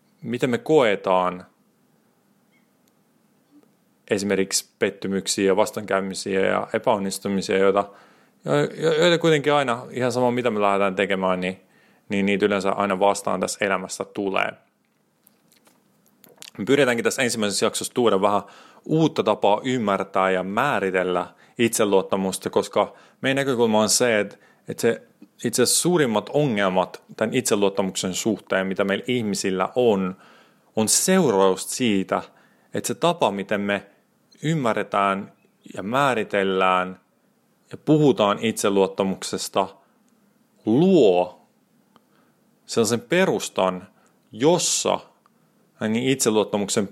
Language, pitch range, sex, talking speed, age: Finnish, 95-145 Hz, male, 100 wpm, 30-49